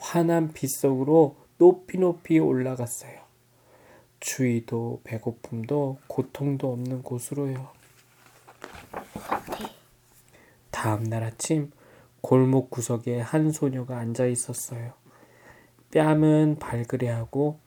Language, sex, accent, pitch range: Korean, male, native, 120-150 Hz